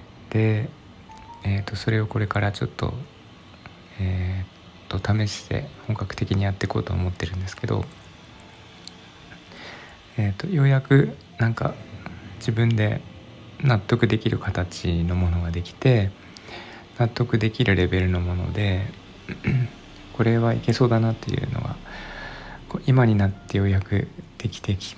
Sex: male